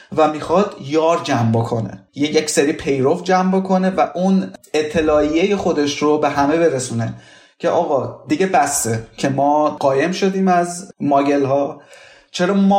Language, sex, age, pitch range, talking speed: Persian, male, 30-49, 135-175 Hz, 145 wpm